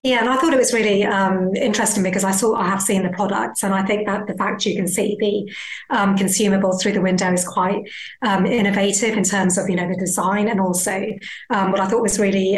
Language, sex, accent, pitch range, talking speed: English, female, British, 185-210 Hz, 245 wpm